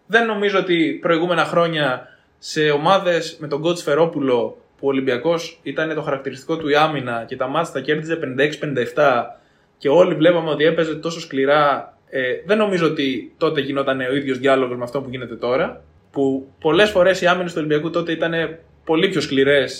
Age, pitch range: 20-39, 145-200 Hz